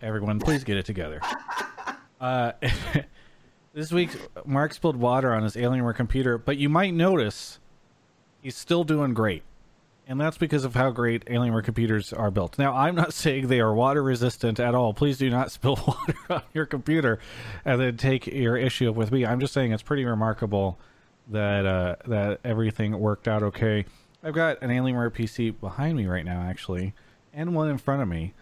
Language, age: English, 30-49